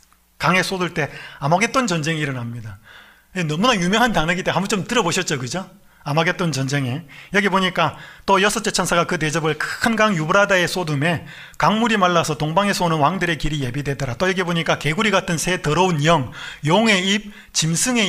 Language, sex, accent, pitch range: Korean, male, native, 155-205 Hz